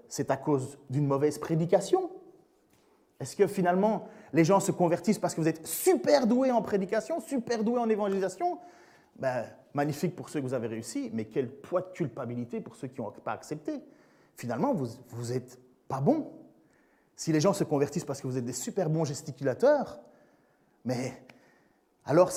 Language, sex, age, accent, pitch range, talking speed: French, male, 30-49, French, 155-240 Hz, 175 wpm